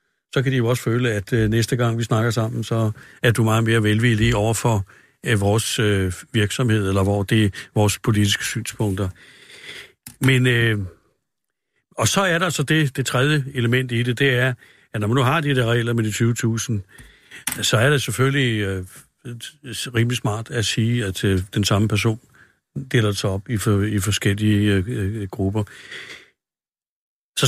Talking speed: 175 wpm